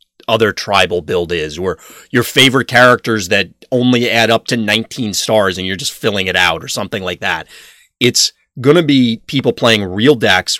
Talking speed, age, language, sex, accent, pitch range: 180 wpm, 30-49, English, male, American, 105-125 Hz